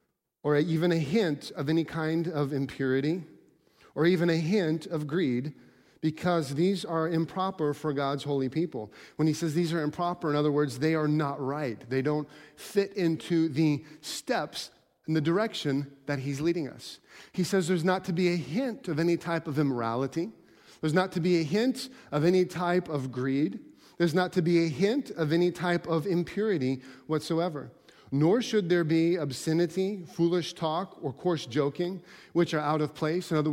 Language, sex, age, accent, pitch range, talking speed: English, male, 40-59, American, 155-185 Hz, 185 wpm